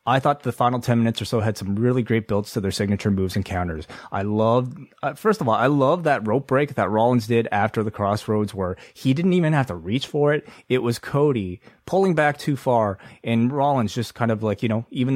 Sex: male